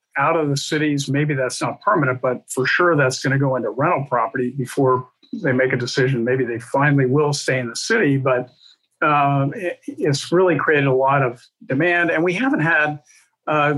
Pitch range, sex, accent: 130-155 Hz, male, American